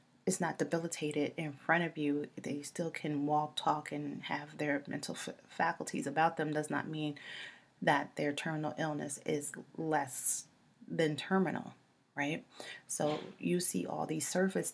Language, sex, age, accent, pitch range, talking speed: English, female, 30-49, American, 140-190 Hz, 155 wpm